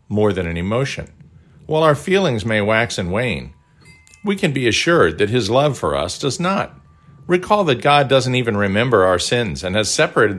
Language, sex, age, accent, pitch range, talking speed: English, male, 50-69, American, 95-135 Hz, 190 wpm